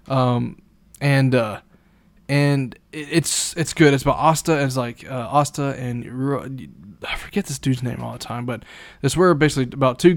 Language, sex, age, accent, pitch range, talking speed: English, male, 20-39, American, 125-145 Hz, 170 wpm